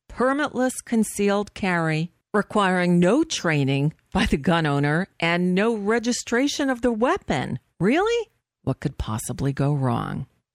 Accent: American